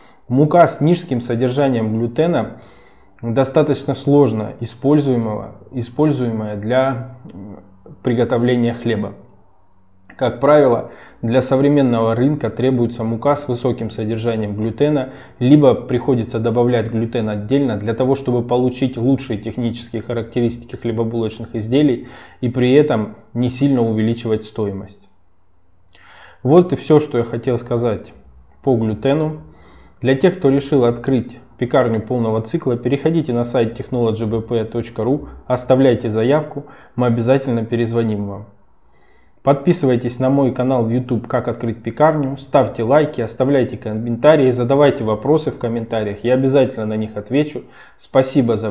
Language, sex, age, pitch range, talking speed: Russian, male, 20-39, 110-135 Hz, 115 wpm